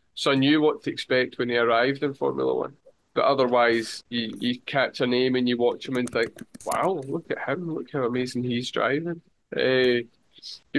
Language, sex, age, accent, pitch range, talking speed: English, male, 20-39, British, 120-145 Hz, 200 wpm